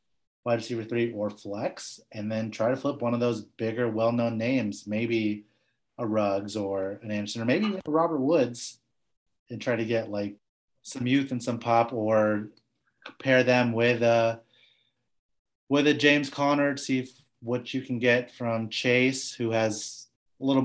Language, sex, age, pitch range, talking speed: English, male, 30-49, 105-125 Hz, 170 wpm